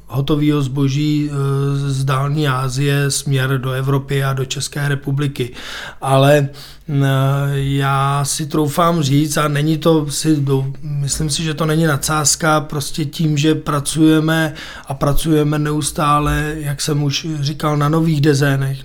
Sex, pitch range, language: male, 140-150 Hz, Czech